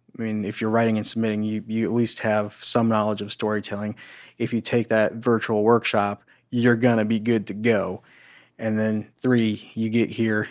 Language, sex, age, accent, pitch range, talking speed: English, male, 20-39, American, 105-120 Hz, 200 wpm